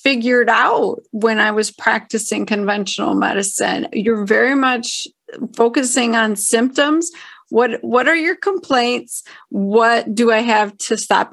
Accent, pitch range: American, 215-255 Hz